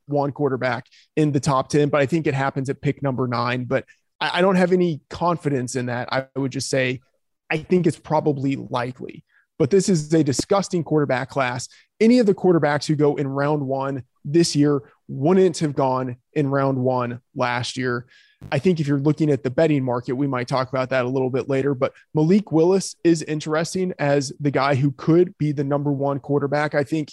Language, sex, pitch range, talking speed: English, male, 135-165 Hz, 210 wpm